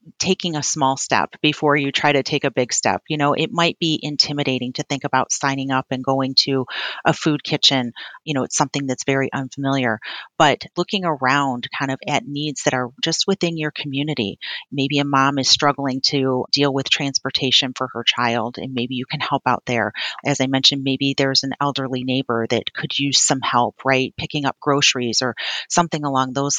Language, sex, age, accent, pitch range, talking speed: English, female, 40-59, American, 135-155 Hz, 200 wpm